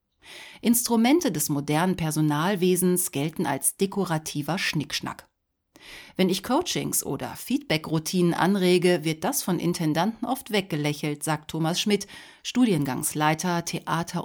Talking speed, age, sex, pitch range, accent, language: 105 wpm, 40-59, female, 155-200 Hz, German, German